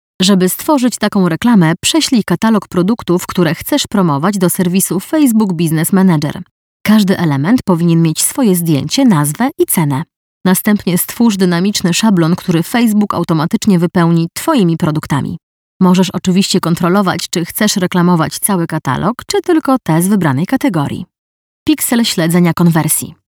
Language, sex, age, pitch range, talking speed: Polish, female, 20-39, 170-205 Hz, 130 wpm